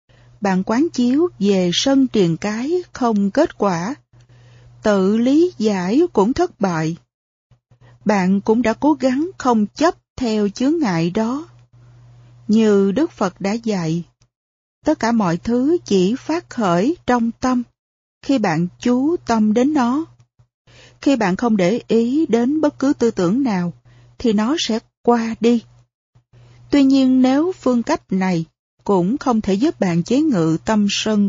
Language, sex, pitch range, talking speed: Vietnamese, female, 165-250 Hz, 150 wpm